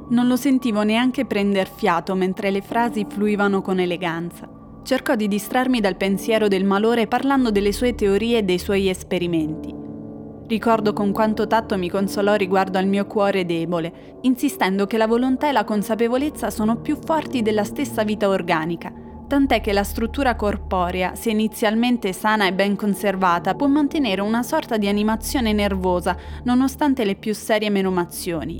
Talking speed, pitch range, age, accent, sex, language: 155 wpm, 195-245 Hz, 20-39, native, female, Italian